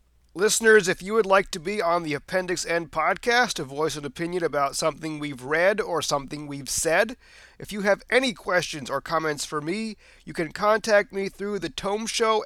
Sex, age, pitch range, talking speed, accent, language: male, 30-49, 170-215 Hz, 195 wpm, American, English